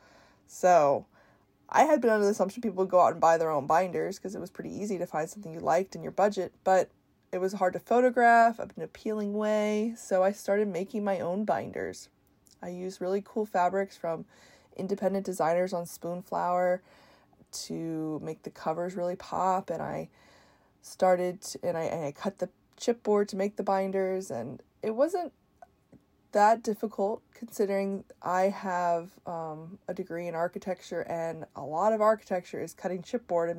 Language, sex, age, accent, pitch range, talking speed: English, female, 20-39, American, 170-210 Hz, 175 wpm